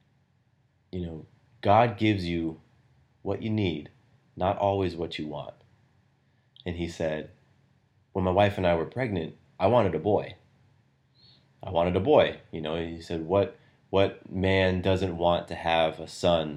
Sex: male